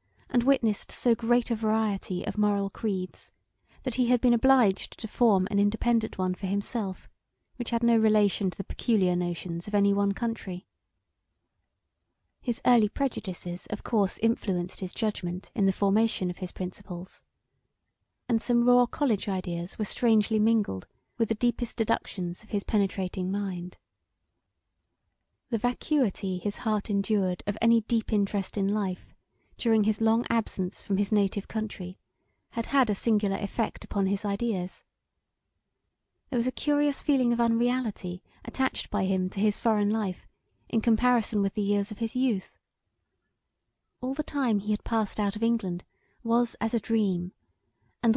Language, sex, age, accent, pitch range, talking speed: English, female, 30-49, British, 190-230 Hz, 155 wpm